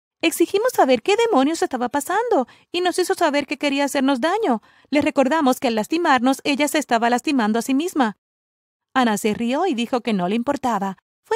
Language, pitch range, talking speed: Spanish, 225-310 Hz, 190 wpm